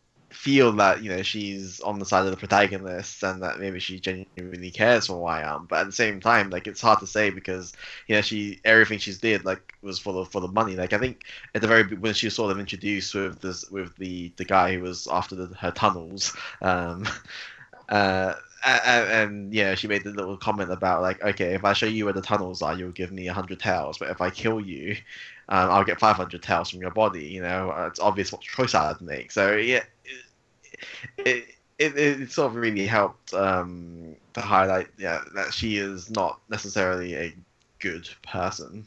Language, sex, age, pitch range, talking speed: English, male, 10-29, 90-105 Hz, 215 wpm